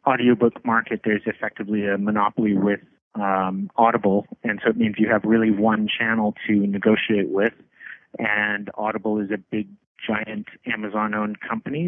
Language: English